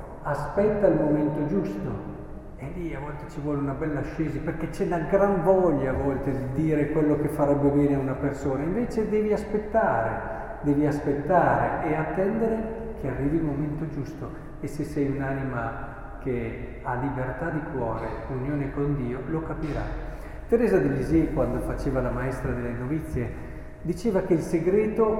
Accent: native